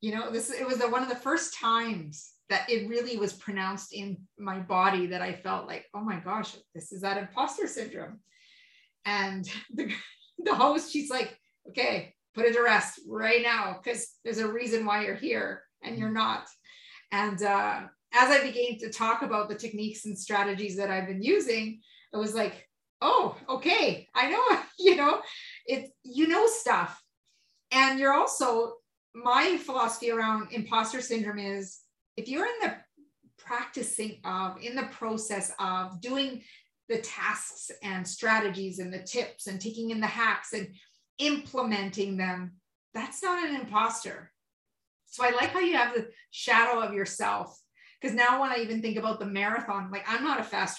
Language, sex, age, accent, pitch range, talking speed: English, female, 30-49, American, 205-265 Hz, 170 wpm